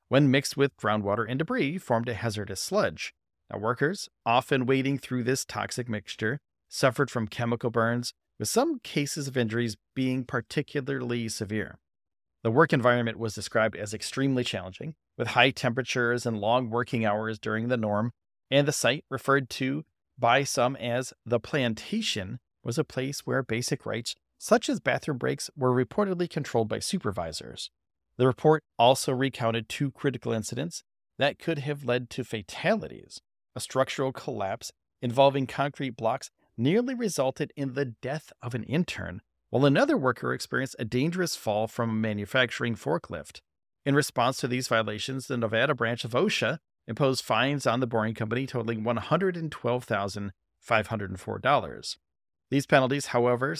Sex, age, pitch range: male, 30-49, 115-140 Hz